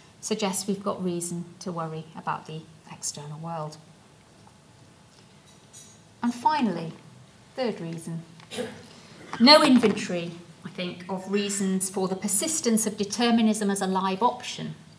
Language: English